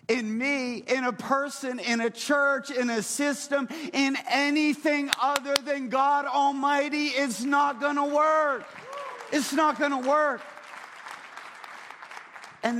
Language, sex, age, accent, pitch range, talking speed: English, male, 30-49, American, 200-250 Hz, 130 wpm